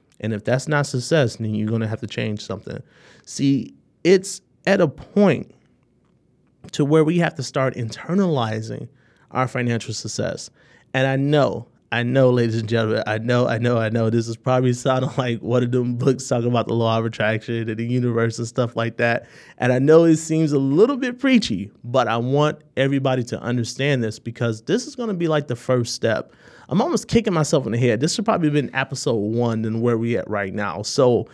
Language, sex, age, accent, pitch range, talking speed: English, male, 30-49, American, 115-145 Hz, 215 wpm